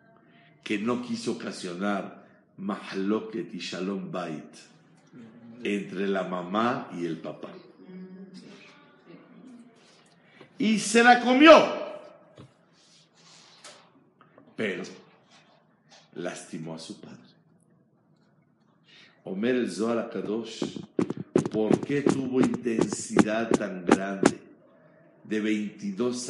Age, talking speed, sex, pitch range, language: 60-79, 80 wpm, male, 105-145 Hz, Spanish